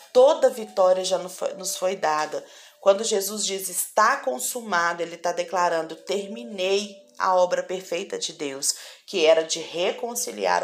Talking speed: 135 wpm